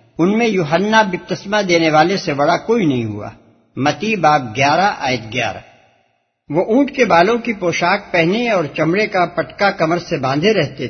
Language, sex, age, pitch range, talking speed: Urdu, male, 60-79, 130-195 Hz, 175 wpm